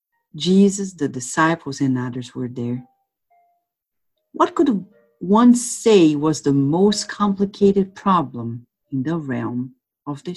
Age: 50-69